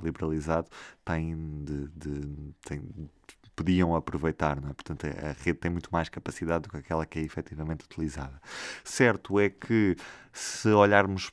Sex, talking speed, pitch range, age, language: male, 115 wpm, 80-90 Hz, 20-39, Portuguese